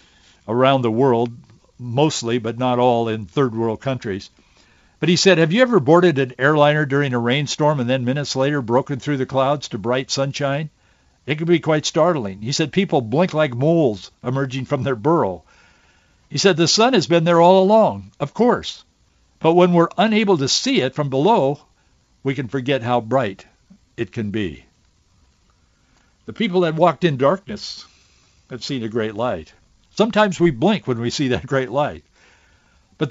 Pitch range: 130-185 Hz